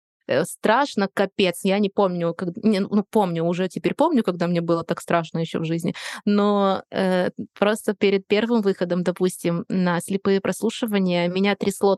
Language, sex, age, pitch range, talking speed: Russian, female, 20-39, 175-210 Hz, 160 wpm